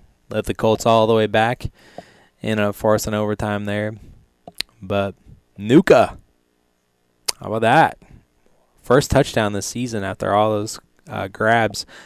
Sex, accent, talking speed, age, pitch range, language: male, American, 140 wpm, 20-39, 95-110 Hz, English